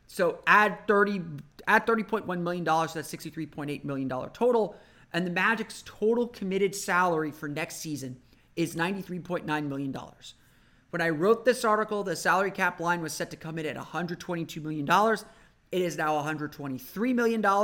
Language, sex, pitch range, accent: English, male, 150-190 Hz, American